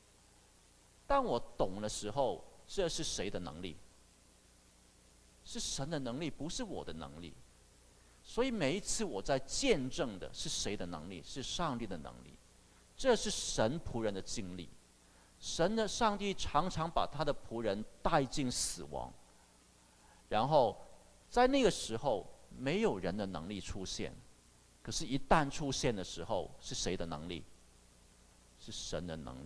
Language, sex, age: Chinese, male, 50-69